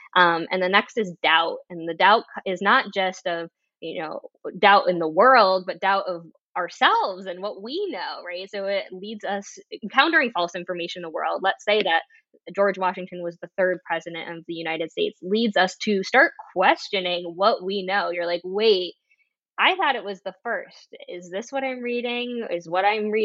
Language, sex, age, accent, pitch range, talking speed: English, female, 10-29, American, 165-210 Hz, 195 wpm